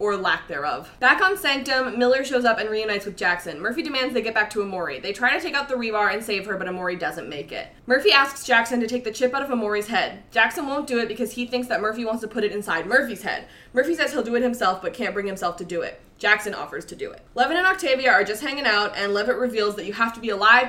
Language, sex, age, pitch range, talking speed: English, female, 20-39, 200-255 Hz, 280 wpm